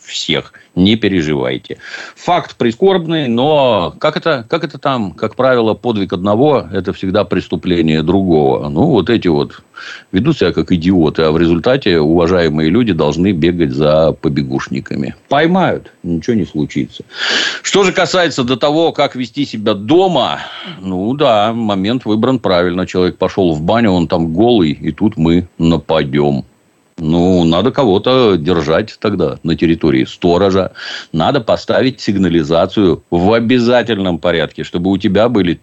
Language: Russian